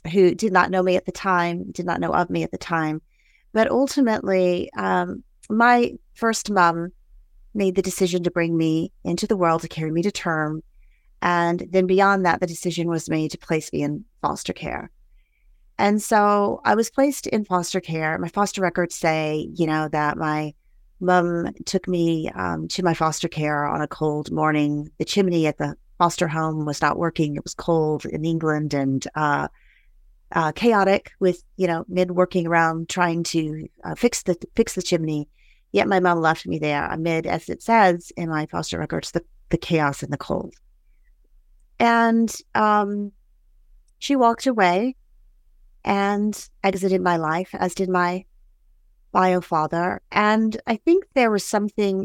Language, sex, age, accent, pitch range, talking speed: English, female, 30-49, American, 160-195 Hz, 175 wpm